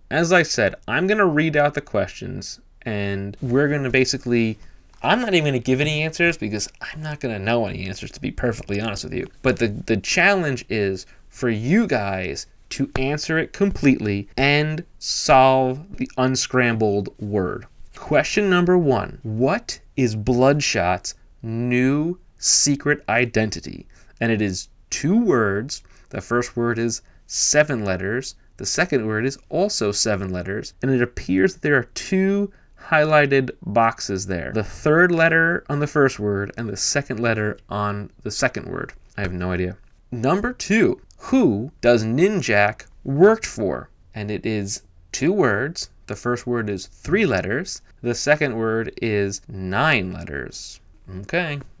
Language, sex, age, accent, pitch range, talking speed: English, male, 20-39, American, 100-145 Hz, 150 wpm